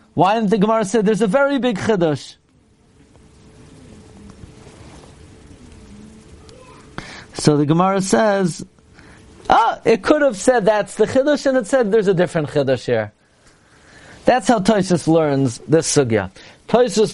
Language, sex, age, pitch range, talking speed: English, male, 40-59, 145-195 Hz, 130 wpm